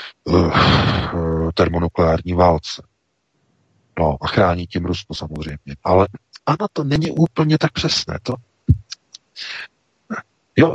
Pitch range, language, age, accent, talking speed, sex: 95-130 Hz, Czech, 50-69, native, 90 wpm, male